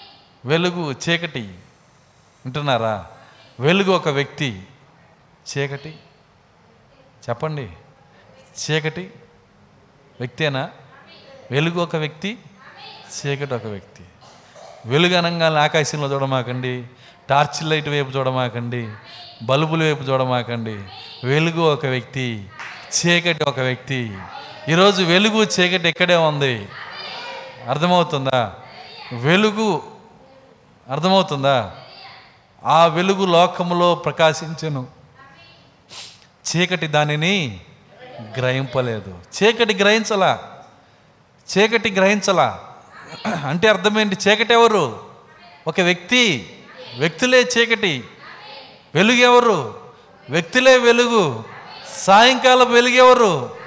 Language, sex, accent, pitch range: Telugu, male, native, 130-210 Hz